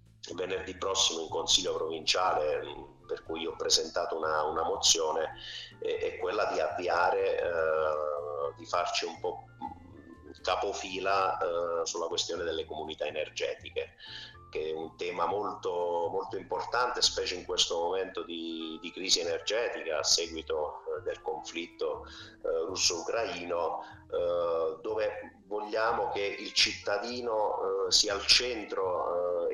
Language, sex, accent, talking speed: Italian, male, native, 130 wpm